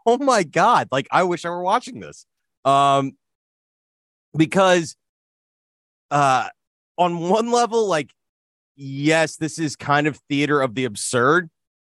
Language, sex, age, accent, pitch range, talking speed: English, male, 30-49, American, 130-195 Hz, 130 wpm